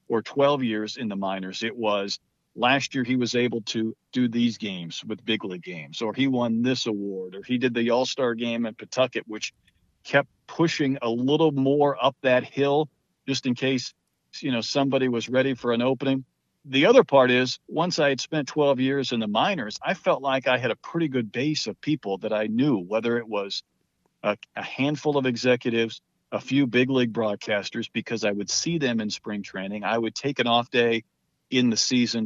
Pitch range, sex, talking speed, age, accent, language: 110-140 Hz, male, 205 wpm, 50-69, American, English